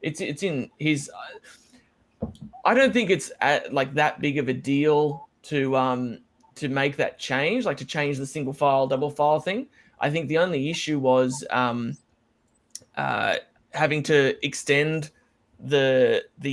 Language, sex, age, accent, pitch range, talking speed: English, male, 20-39, Australian, 130-160 Hz, 160 wpm